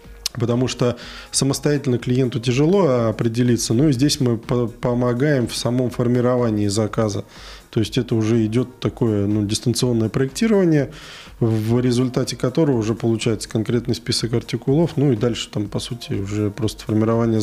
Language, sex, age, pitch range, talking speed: Russian, male, 20-39, 110-130 Hz, 150 wpm